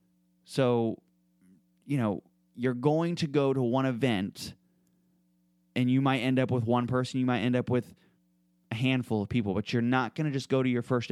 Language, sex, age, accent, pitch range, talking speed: English, male, 20-39, American, 95-130 Hz, 200 wpm